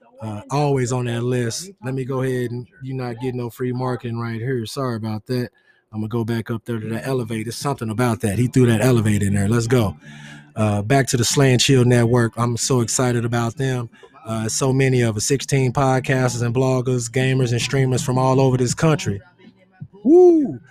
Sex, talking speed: male, 210 wpm